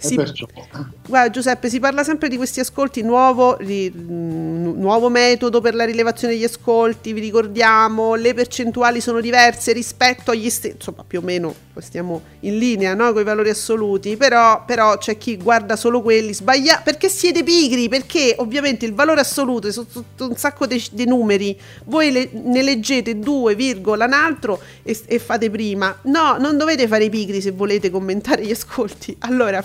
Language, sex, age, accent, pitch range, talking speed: Italian, female, 40-59, native, 220-295 Hz, 175 wpm